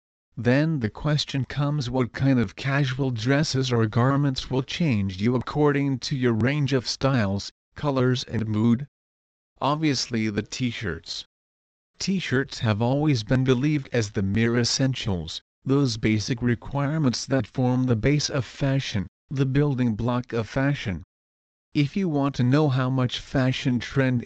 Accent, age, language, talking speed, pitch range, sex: American, 40-59, English, 145 wpm, 110-135 Hz, male